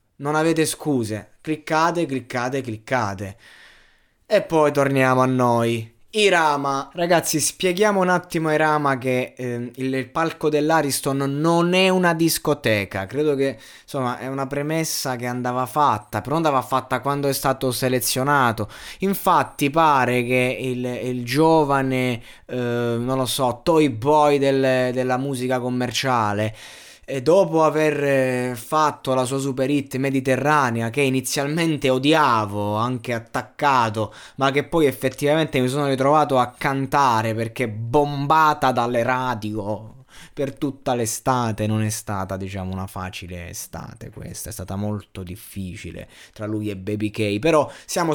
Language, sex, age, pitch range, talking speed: Italian, male, 20-39, 120-150 Hz, 135 wpm